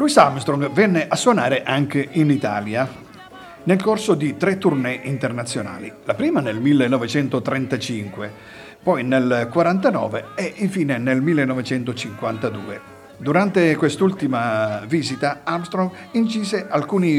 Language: Italian